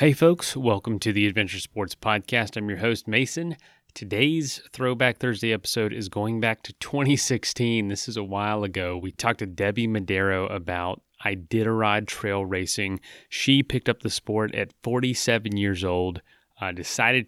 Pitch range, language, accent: 95-115 Hz, English, American